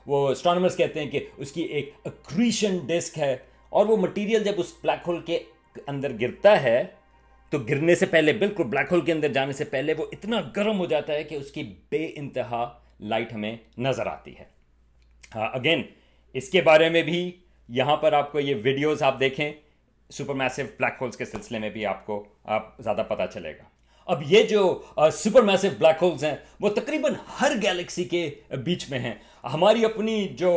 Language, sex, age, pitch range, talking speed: Urdu, male, 40-59, 125-175 Hz, 190 wpm